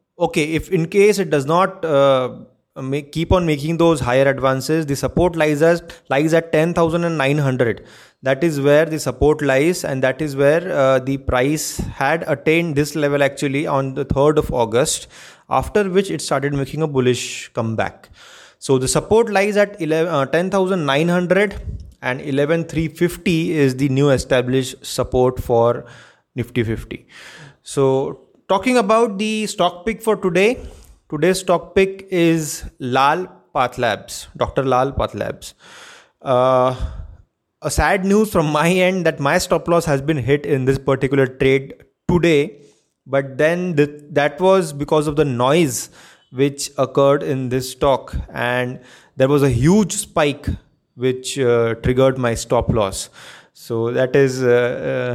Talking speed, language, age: 145 wpm, English, 20-39